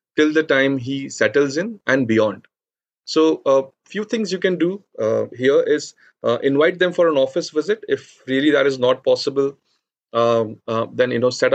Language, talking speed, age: English, 195 wpm, 30-49